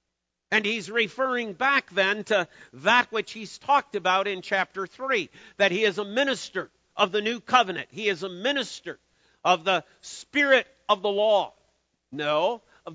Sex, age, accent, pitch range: male, 50-69, American, 190-245 Hz